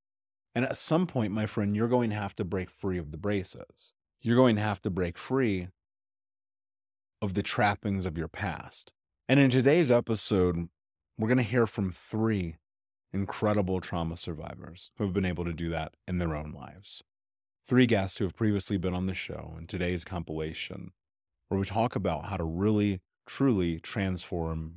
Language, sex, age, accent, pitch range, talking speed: English, male, 30-49, American, 85-105 Hz, 180 wpm